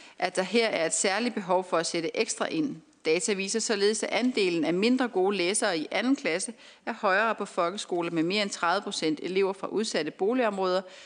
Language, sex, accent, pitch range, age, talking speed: Danish, female, native, 185-240 Hz, 30-49, 200 wpm